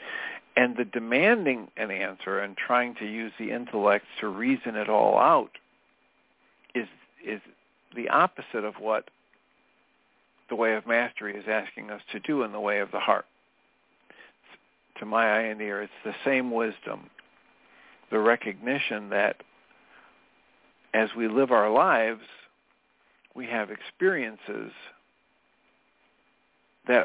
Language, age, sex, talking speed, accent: English, 50-69, male, 130 wpm, American